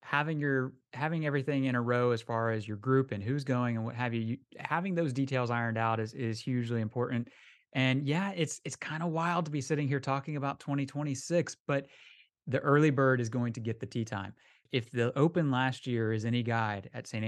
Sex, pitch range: male, 120-145 Hz